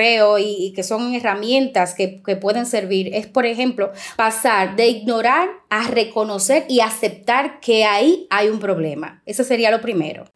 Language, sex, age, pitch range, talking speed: Spanish, female, 20-39, 205-250 Hz, 160 wpm